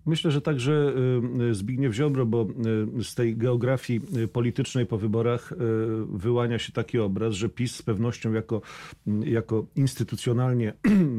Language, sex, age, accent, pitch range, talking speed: Polish, male, 40-59, native, 110-120 Hz, 125 wpm